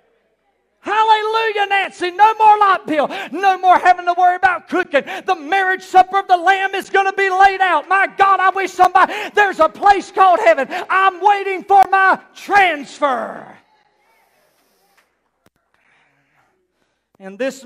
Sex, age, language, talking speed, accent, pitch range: male, 40-59, English, 145 wpm, American, 200-300 Hz